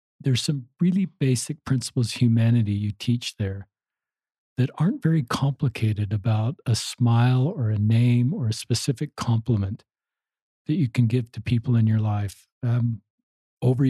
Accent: American